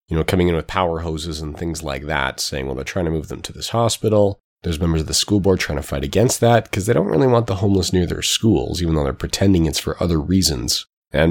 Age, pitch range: 30-49, 80-100 Hz